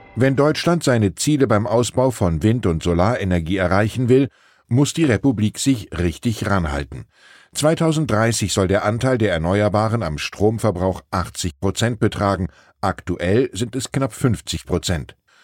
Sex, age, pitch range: male, 10-29, 95-125 Hz